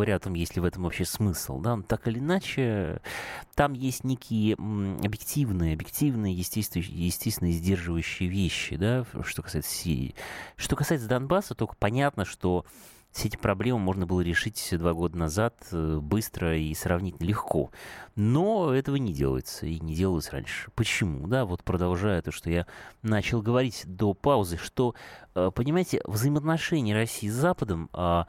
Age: 20-39